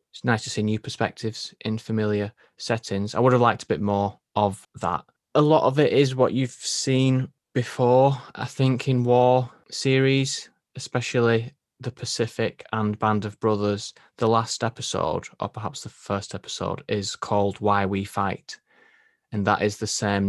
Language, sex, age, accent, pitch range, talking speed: English, male, 20-39, British, 100-115 Hz, 165 wpm